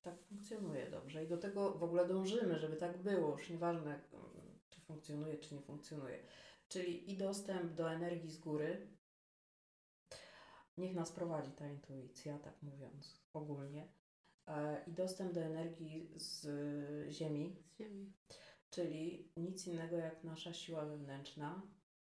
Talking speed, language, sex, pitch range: 125 wpm, Polish, female, 155-190 Hz